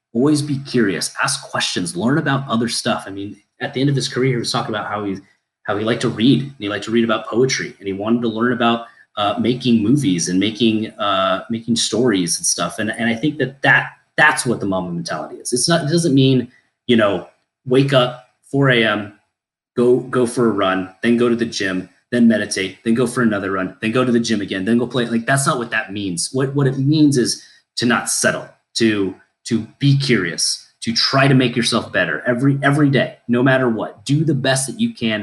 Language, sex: English, male